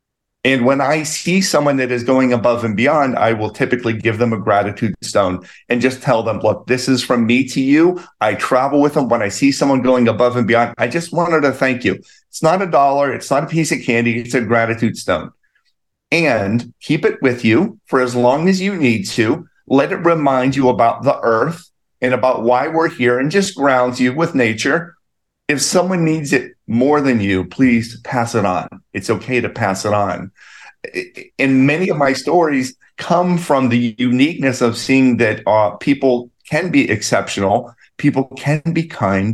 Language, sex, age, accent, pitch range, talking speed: English, male, 40-59, American, 115-145 Hz, 200 wpm